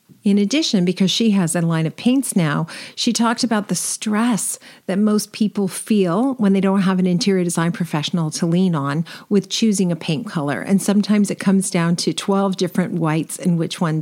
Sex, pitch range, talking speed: female, 170-205 Hz, 200 wpm